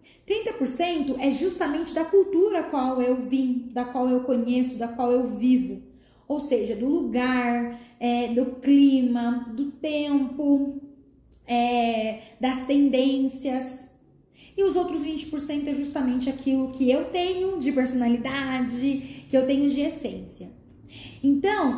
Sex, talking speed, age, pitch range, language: female, 120 wpm, 10-29, 245-285 Hz, Portuguese